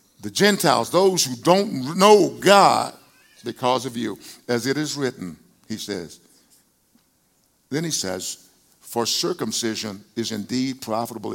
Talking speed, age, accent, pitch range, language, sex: 125 wpm, 50-69, American, 115-170 Hz, English, male